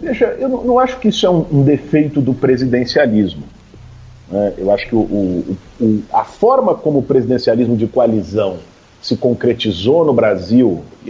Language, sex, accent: Portuguese, male, Brazilian